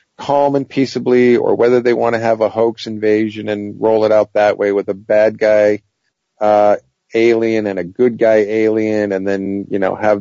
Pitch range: 100-125 Hz